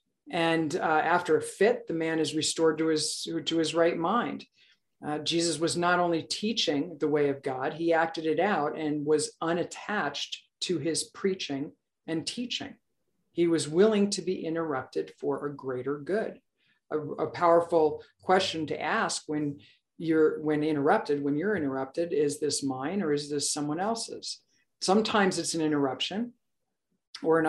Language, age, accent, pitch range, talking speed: English, 50-69, American, 145-175 Hz, 160 wpm